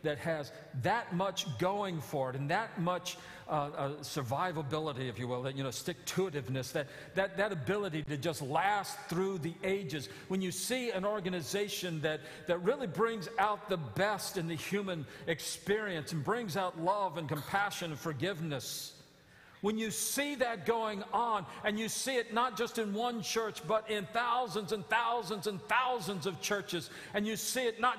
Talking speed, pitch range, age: 180 wpm, 170-235 Hz, 50-69